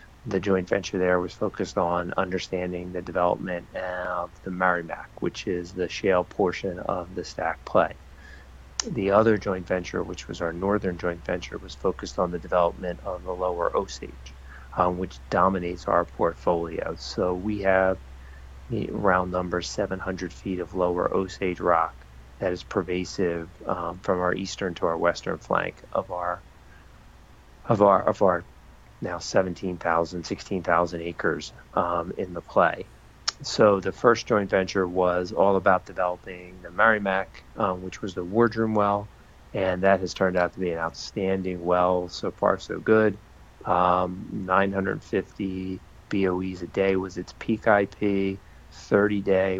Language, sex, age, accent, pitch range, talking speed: English, male, 40-59, American, 85-95 Hz, 150 wpm